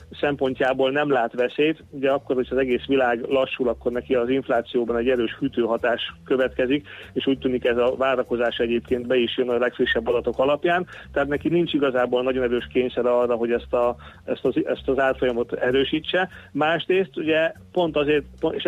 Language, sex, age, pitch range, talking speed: Hungarian, male, 40-59, 125-150 Hz, 175 wpm